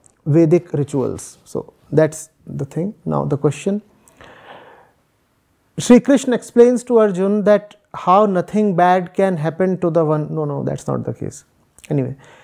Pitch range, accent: 160-225 Hz, Indian